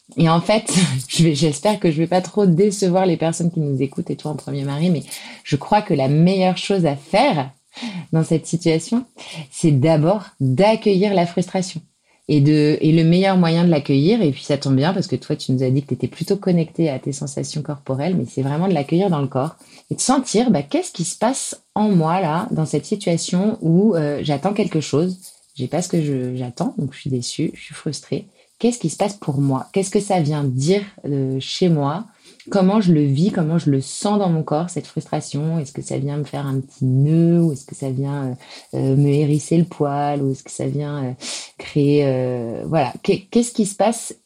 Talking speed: 230 wpm